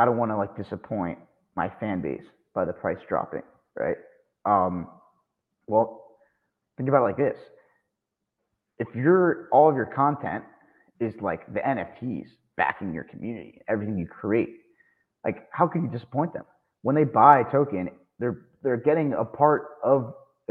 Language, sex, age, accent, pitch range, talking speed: English, male, 30-49, American, 105-150 Hz, 165 wpm